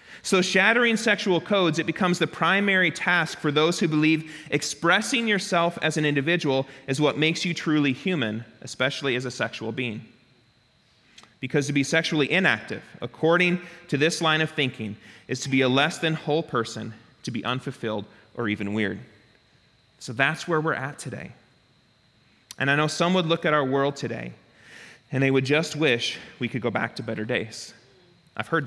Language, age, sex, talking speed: English, 30-49, male, 175 wpm